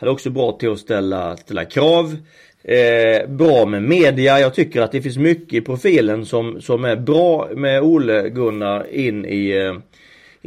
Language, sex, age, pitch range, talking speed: Swedish, male, 30-49, 115-150 Hz, 190 wpm